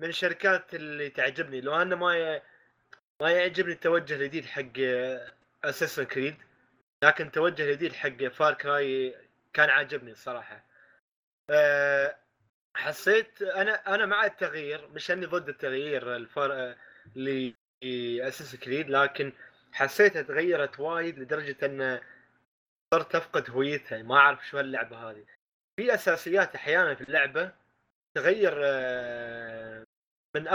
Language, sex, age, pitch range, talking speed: Arabic, male, 20-39, 135-175 Hz, 110 wpm